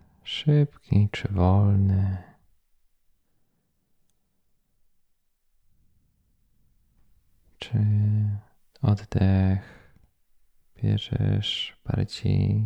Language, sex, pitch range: Polish, male, 95-115 Hz